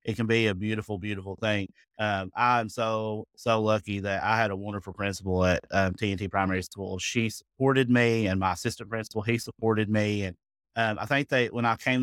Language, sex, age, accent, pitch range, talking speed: English, male, 30-49, American, 95-115 Hz, 205 wpm